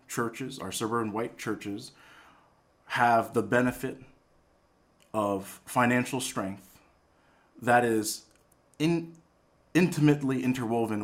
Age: 40-59